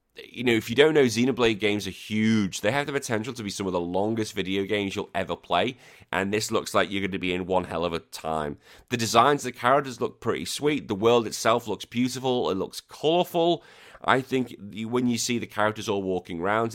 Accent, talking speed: British, 235 wpm